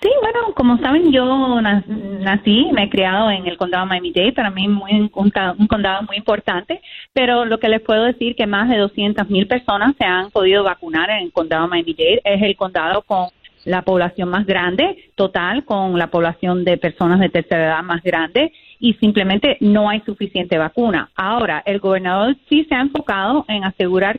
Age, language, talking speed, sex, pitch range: 30-49, Spanish, 185 wpm, female, 190-245 Hz